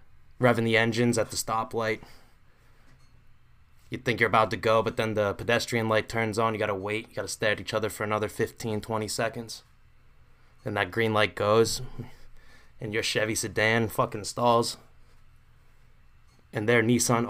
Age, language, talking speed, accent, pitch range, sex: 20-39, English, 165 wpm, American, 105-125 Hz, male